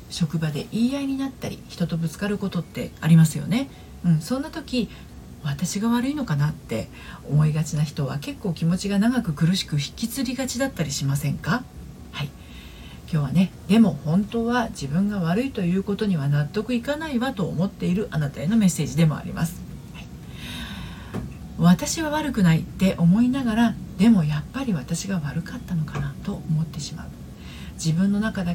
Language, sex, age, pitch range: Japanese, female, 40-59, 150-210 Hz